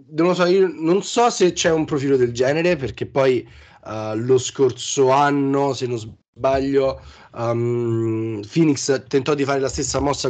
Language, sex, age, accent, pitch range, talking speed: Italian, male, 20-39, native, 125-150 Hz, 170 wpm